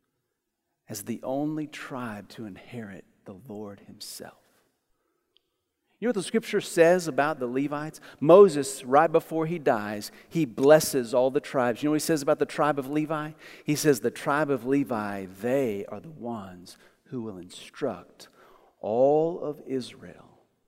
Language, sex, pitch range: English, male, 130-200 Hz